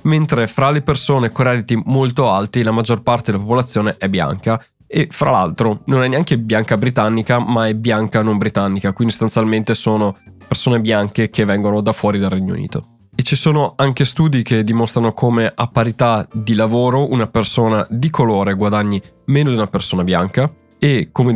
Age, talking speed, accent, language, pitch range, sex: 20-39, 180 wpm, native, Italian, 105-130 Hz, male